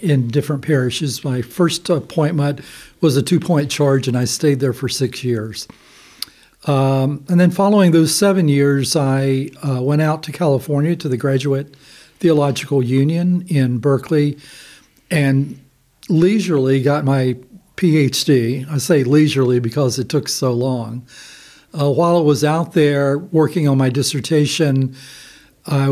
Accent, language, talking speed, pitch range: American, English, 140 wpm, 130-150 Hz